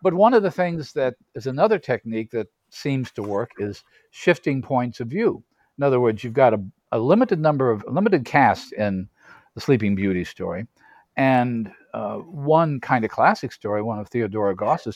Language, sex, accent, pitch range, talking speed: English, male, American, 115-170 Hz, 190 wpm